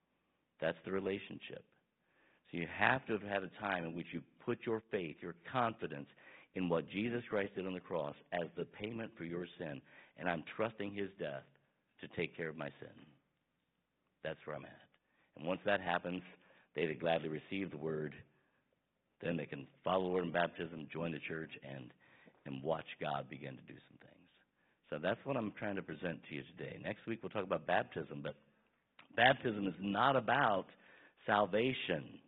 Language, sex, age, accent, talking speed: English, male, 60-79, American, 185 wpm